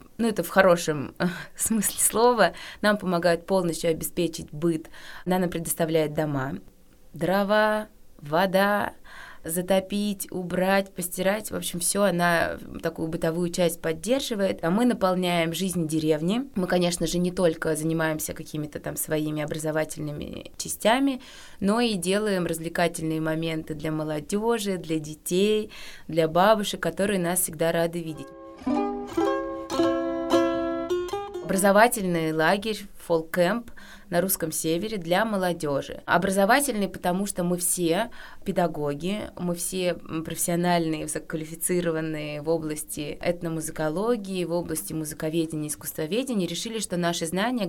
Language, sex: Russian, female